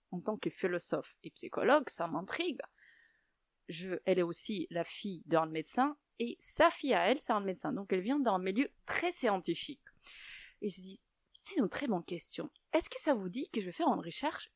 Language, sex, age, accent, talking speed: French, female, 30-49, French, 205 wpm